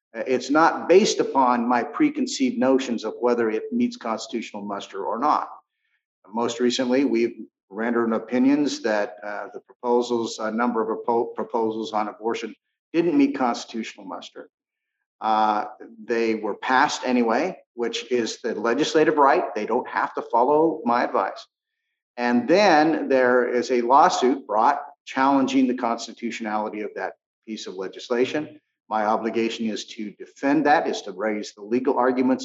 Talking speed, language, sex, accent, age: 145 wpm, English, male, American, 50-69